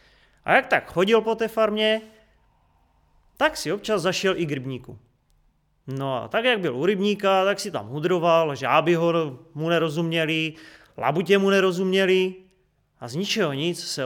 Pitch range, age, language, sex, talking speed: 140-200 Hz, 30-49, Czech, male, 160 wpm